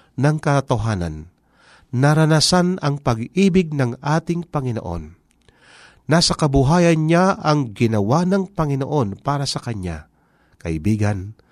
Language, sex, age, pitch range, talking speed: Filipino, male, 40-59, 100-155 Hz, 100 wpm